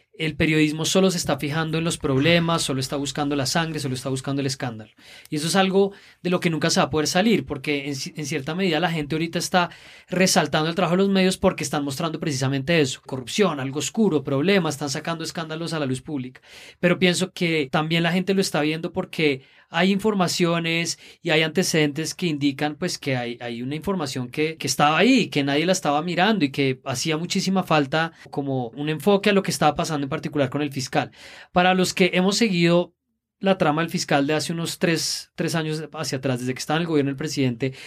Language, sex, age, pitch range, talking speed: Spanish, male, 20-39, 145-175 Hz, 220 wpm